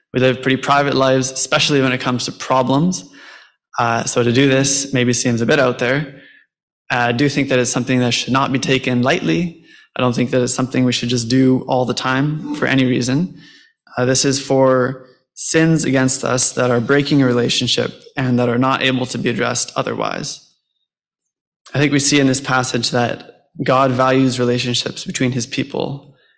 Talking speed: 195 wpm